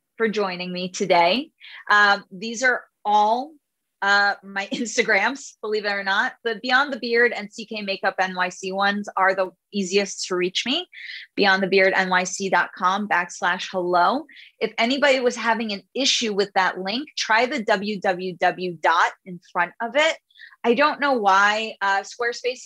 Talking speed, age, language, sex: 150 wpm, 20-39, English, female